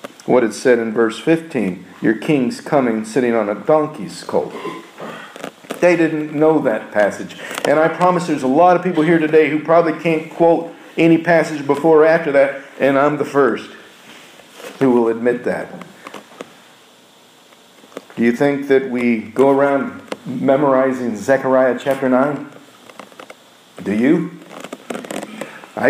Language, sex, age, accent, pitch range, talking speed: English, male, 50-69, American, 135-175 Hz, 140 wpm